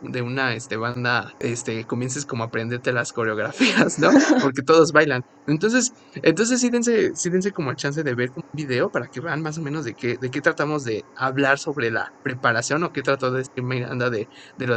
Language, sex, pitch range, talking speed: Spanish, male, 130-160 Hz, 205 wpm